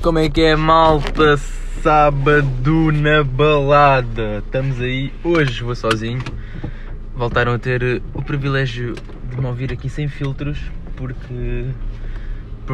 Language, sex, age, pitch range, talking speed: Portuguese, male, 20-39, 90-140 Hz, 120 wpm